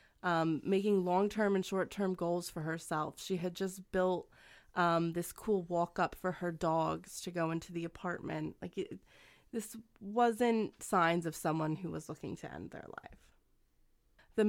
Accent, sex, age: American, female, 20-39